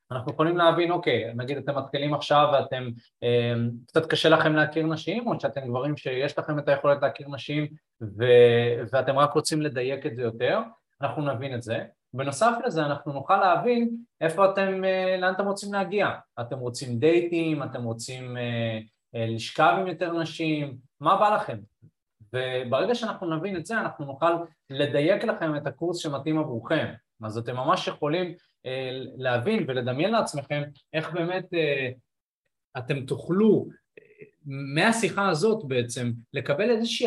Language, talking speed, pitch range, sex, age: Hebrew, 150 wpm, 125-170 Hz, male, 20-39